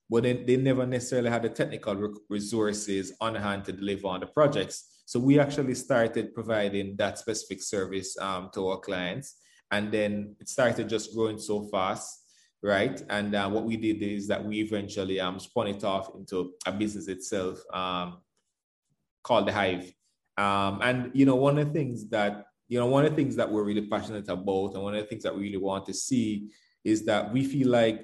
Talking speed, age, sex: 200 wpm, 20-39, male